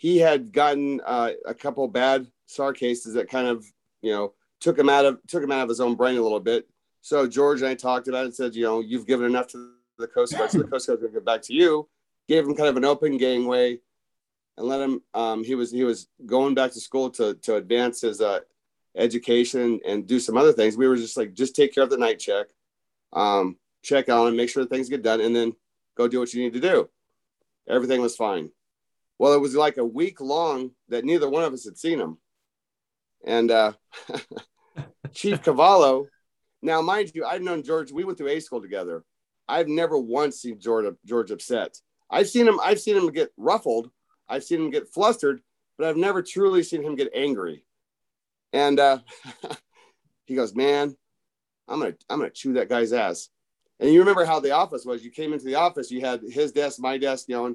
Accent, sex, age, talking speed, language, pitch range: American, male, 40-59, 220 wpm, English, 120-160 Hz